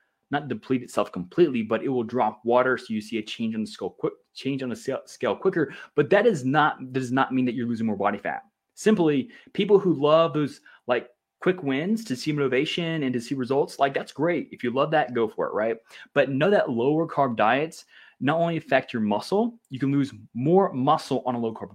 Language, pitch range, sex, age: English, 125-155 Hz, male, 20-39